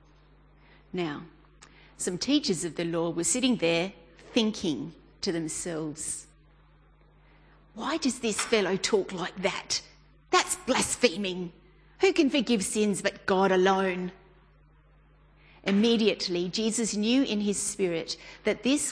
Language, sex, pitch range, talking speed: English, female, 170-230 Hz, 115 wpm